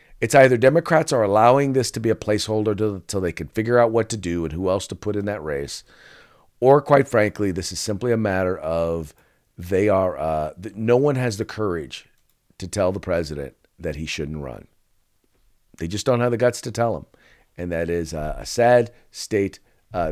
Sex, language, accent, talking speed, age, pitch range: male, English, American, 205 wpm, 50-69, 105-145 Hz